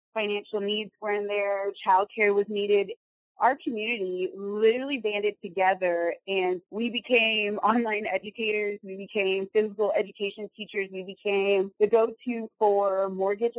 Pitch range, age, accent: 195-225 Hz, 30-49, American